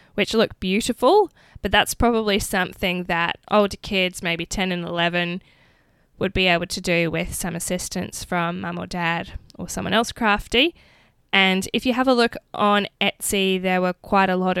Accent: Australian